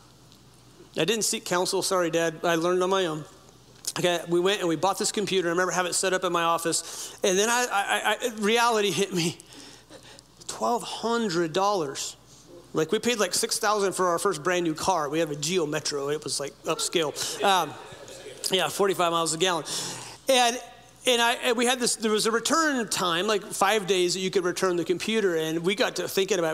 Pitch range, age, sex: 170-215 Hz, 40-59, male